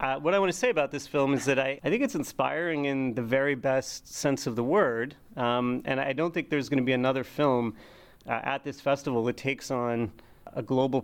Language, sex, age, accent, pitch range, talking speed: English, male, 30-49, American, 120-150 Hz, 240 wpm